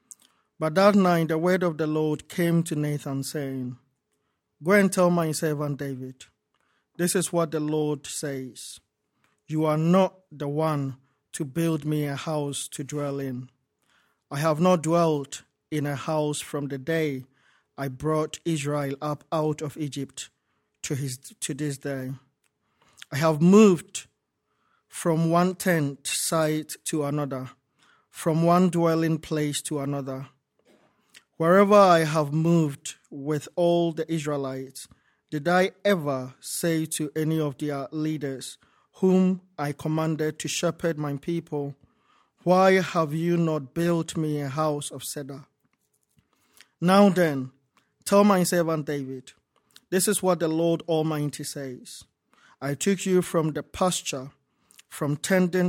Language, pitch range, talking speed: English, 140-170 Hz, 140 wpm